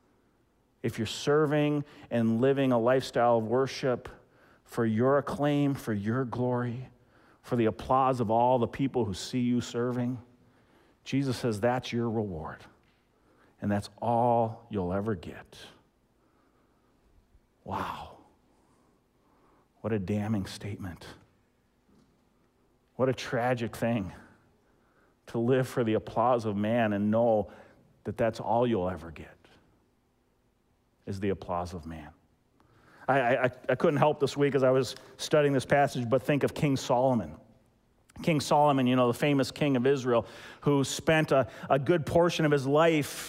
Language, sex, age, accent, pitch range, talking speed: English, male, 50-69, American, 115-145 Hz, 140 wpm